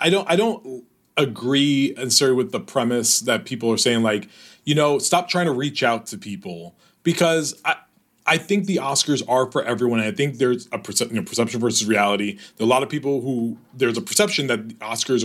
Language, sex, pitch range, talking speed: English, male, 110-155 Hz, 225 wpm